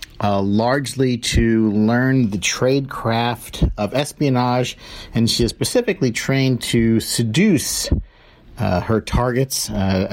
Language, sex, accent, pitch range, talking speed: English, male, American, 105-135 Hz, 115 wpm